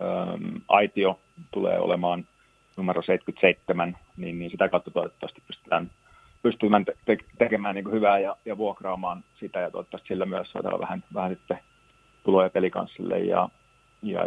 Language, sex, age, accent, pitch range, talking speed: Finnish, male, 40-59, native, 90-105 Hz, 135 wpm